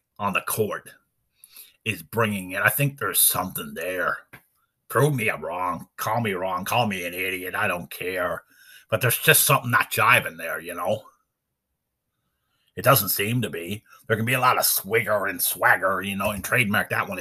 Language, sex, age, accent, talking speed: English, male, 30-49, American, 190 wpm